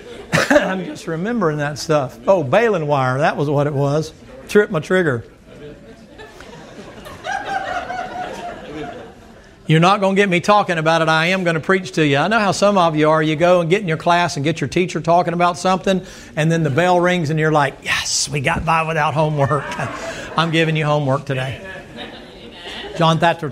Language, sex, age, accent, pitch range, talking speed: English, male, 60-79, American, 145-185 Hz, 185 wpm